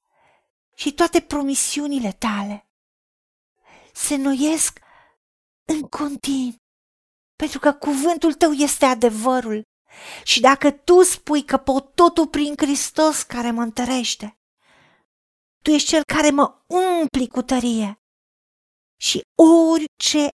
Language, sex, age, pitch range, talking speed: Romanian, female, 40-59, 240-300 Hz, 105 wpm